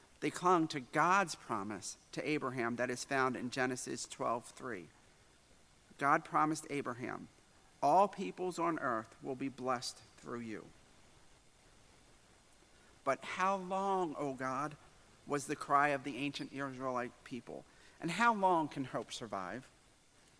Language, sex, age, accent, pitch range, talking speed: English, male, 50-69, American, 125-160 Hz, 130 wpm